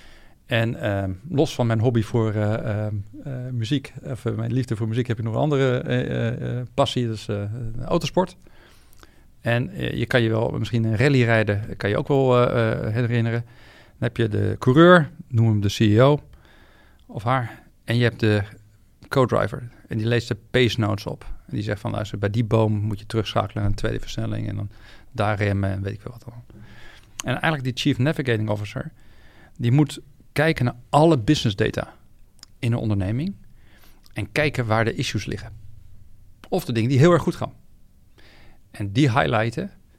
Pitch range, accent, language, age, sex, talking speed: 105-130 Hz, Dutch, Dutch, 40-59, male, 190 wpm